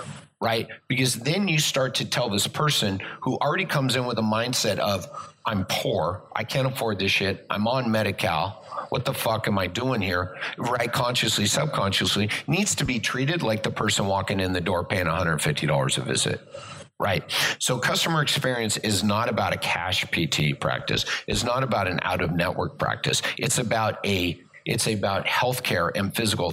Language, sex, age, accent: English, male, 50-69, American